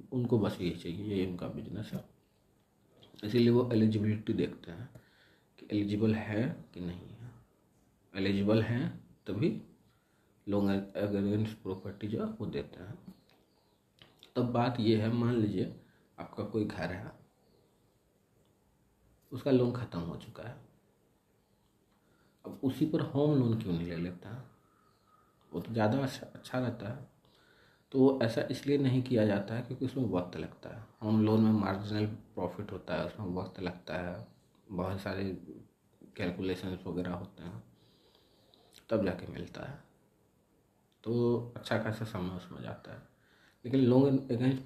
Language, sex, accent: Hindi, male, native